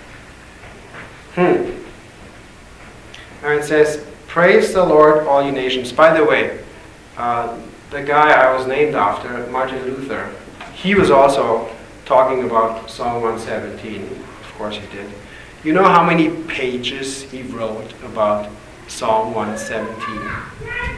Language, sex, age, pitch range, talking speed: English, male, 40-59, 125-175 Hz, 125 wpm